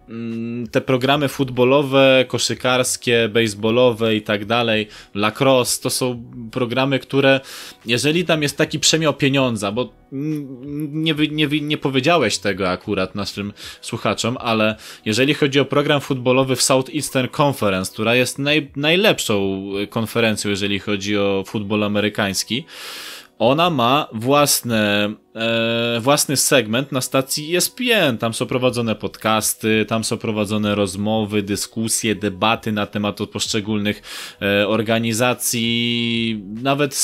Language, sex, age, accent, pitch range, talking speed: Polish, male, 20-39, native, 110-145 Hz, 120 wpm